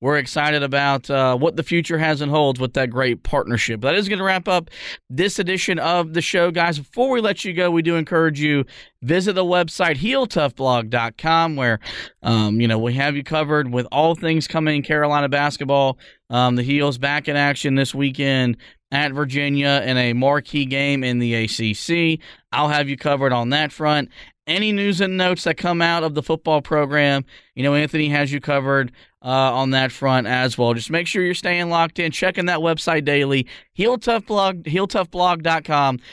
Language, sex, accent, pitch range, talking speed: English, male, American, 135-175 Hz, 190 wpm